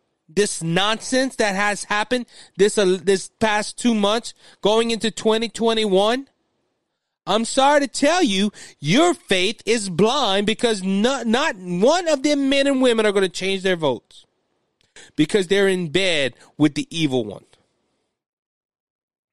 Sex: male